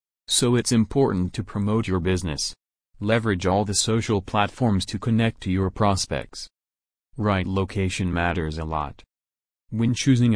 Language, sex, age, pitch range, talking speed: English, male, 30-49, 90-115 Hz, 140 wpm